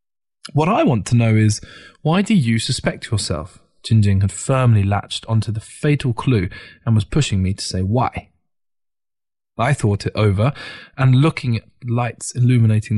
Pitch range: 105-135 Hz